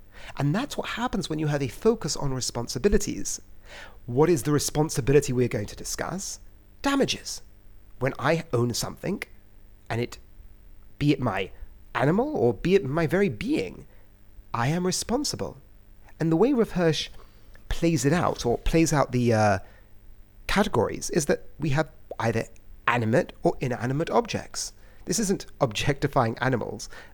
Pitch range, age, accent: 100-170 Hz, 40-59, British